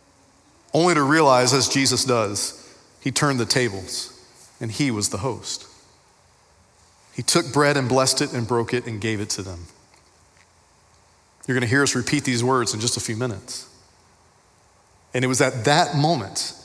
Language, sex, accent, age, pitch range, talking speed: English, male, American, 40-59, 110-145 Hz, 170 wpm